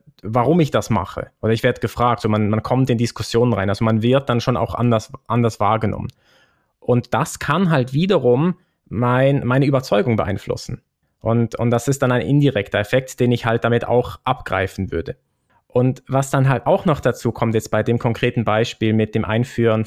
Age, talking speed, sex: 20-39, 190 wpm, male